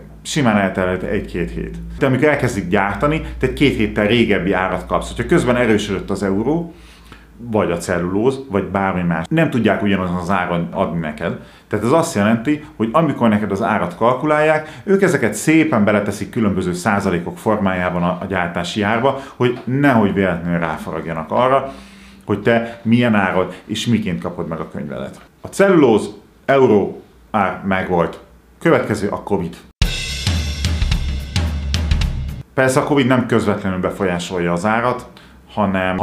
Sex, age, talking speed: male, 40-59, 140 wpm